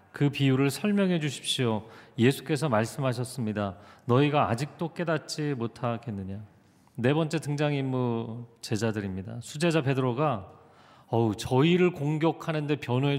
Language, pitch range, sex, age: Korean, 110-145 Hz, male, 40-59